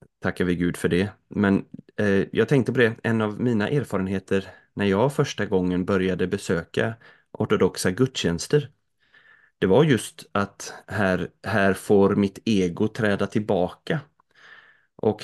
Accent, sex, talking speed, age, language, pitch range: native, male, 135 wpm, 30-49, Swedish, 95-110 Hz